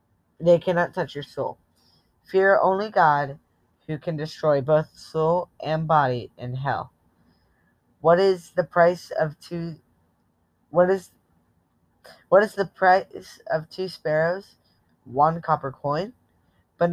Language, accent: English, American